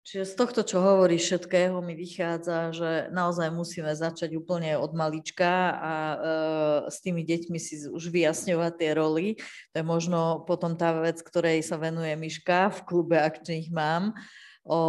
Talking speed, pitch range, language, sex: 160 wpm, 160-175 Hz, Slovak, female